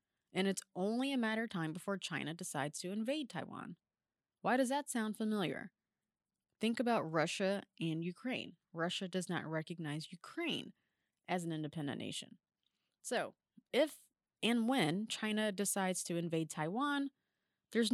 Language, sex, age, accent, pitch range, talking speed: English, female, 20-39, American, 170-225 Hz, 140 wpm